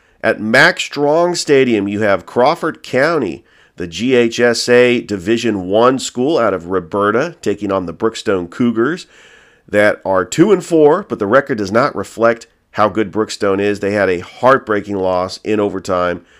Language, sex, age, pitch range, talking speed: English, male, 40-59, 95-120 Hz, 150 wpm